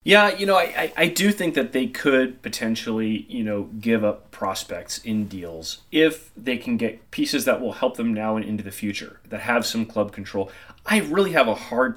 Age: 30-49